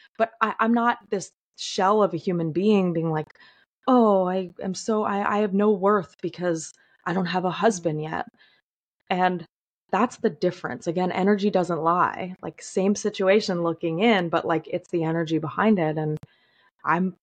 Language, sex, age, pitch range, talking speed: English, female, 20-39, 165-205 Hz, 170 wpm